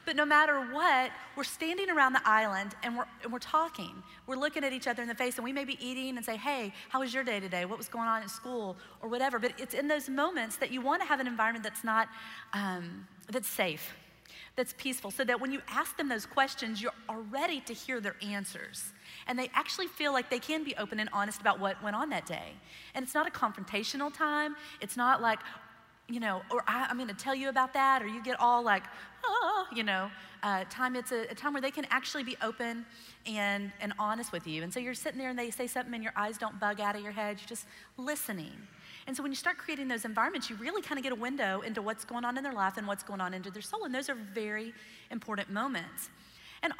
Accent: American